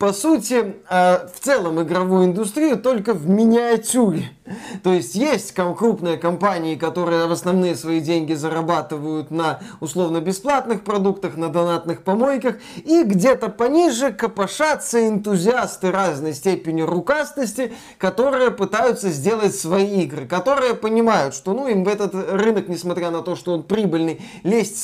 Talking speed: 135 wpm